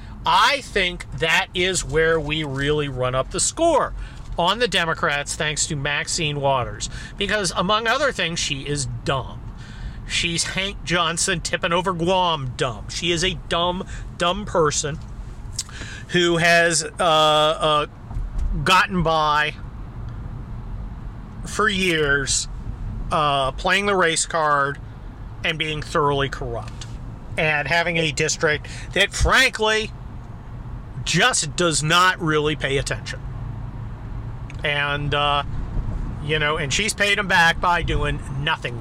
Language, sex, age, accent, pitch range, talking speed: English, male, 40-59, American, 120-170 Hz, 120 wpm